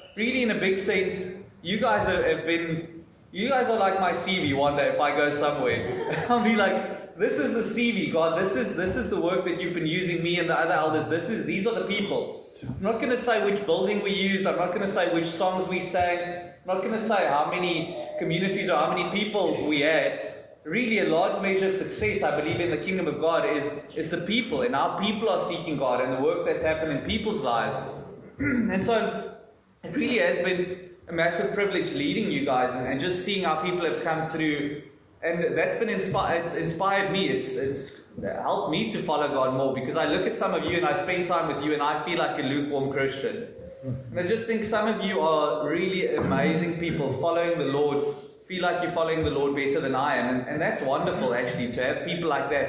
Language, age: English, 20-39